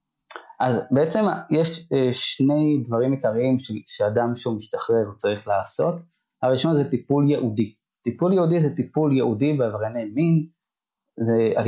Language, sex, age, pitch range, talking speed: Hebrew, male, 20-39, 115-150 Hz, 120 wpm